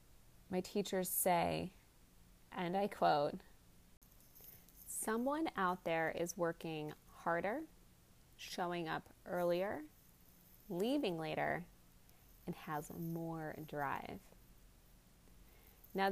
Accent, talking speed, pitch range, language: American, 80 wpm, 165-215 Hz, English